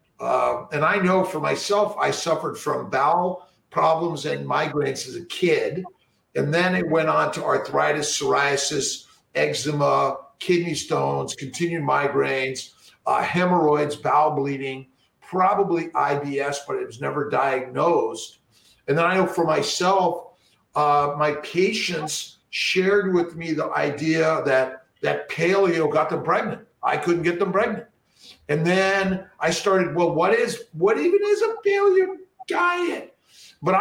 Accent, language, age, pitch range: American, English, 50-69, 155-205 Hz